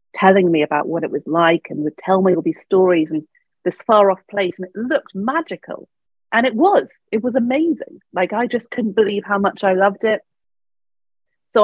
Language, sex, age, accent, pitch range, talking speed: English, female, 30-49, British, 170-215 Hz, 205 wpm